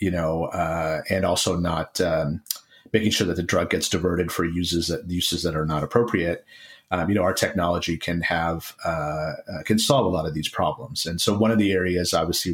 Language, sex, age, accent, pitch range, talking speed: English, male, 30-49, American, 85-105 Hz, 215 wpm